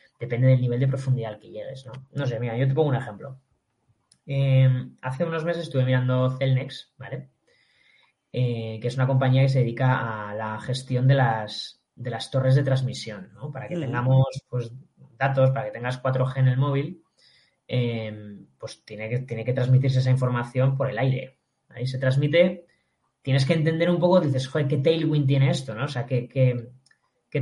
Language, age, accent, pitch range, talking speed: Spanish, 20-39, Spanish, 125-150 Hz, 185 wpm